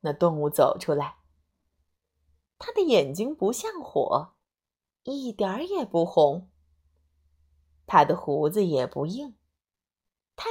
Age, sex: 30-49, female